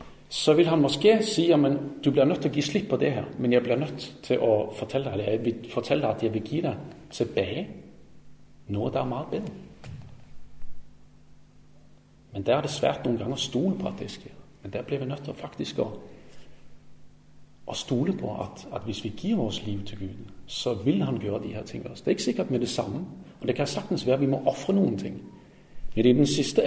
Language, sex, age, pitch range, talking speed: Danish, male, 40-59, 110-145 Hz, 220 wpm